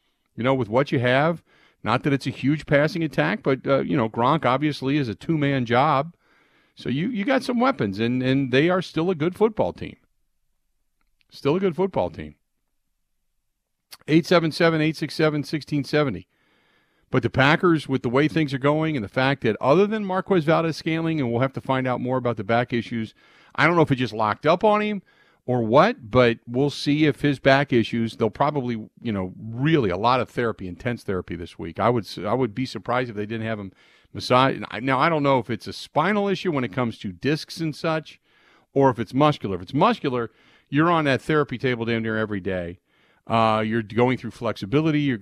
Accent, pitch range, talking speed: American, 115-155 Hz, 215 wpm